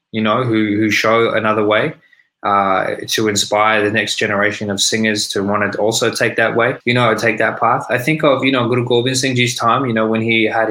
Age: 20-39